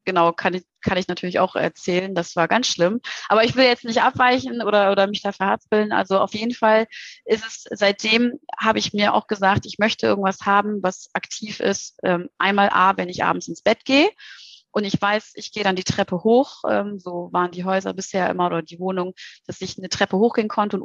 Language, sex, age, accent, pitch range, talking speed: German, female, 30-49, German, 180-215 Hz, 215 wpm